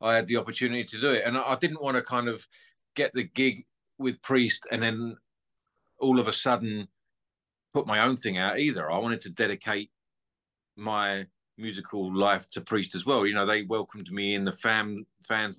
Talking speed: 195 wpm